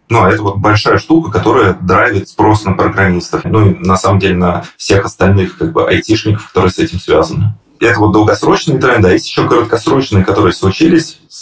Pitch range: 95-110 Hz